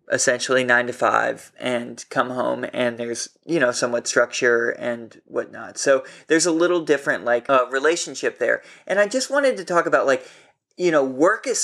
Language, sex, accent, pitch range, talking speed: English, male, American, 130-175 Hz, 190 wpm